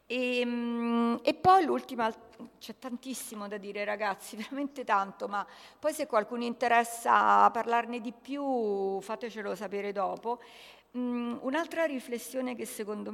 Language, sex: Italian, female